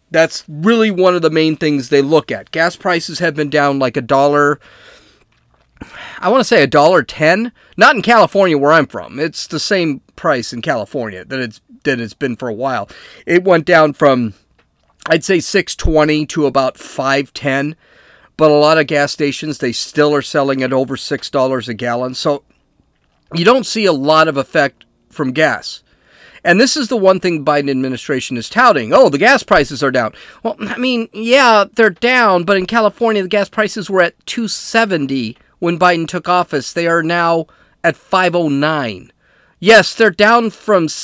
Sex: male